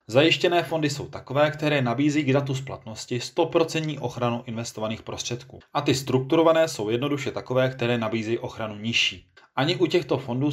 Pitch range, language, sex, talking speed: 120-145 Hz, Czech, male, 155 wpm